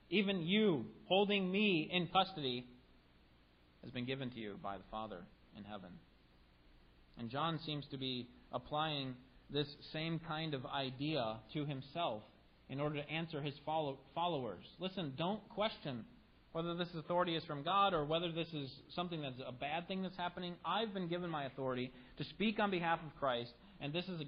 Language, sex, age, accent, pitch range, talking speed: English, male, 40-59, American, 105-170 Hz, 175 wpm